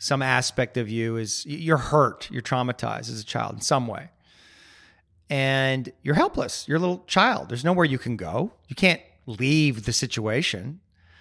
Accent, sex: American, male